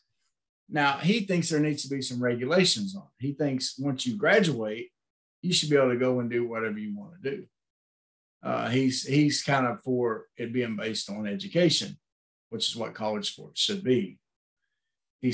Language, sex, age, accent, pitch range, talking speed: English, male, 40-59, American, 115-155 Hz, 190 wpm